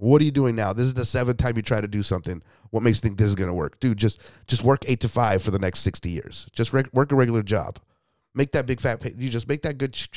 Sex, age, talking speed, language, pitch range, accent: male, 30-49, 315 wpm, English, 100-135 Hz, American